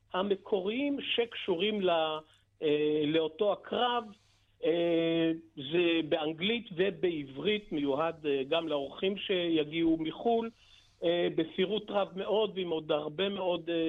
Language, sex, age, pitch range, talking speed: Hebrew, male, 50-69, 155-195 Hz, 80 wpm